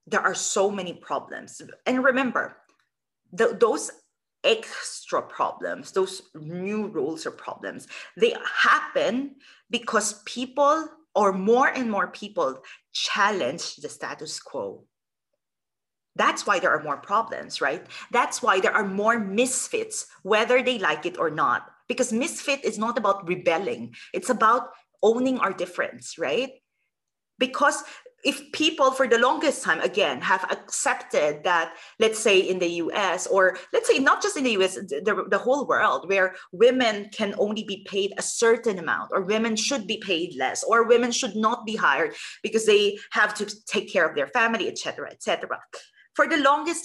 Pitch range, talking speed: 200-290 Hz, 160 wpm